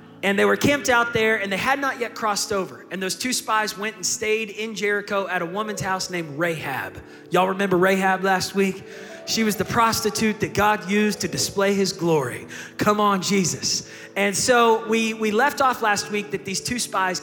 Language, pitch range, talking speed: English, 175-220 Hz, 205 wpm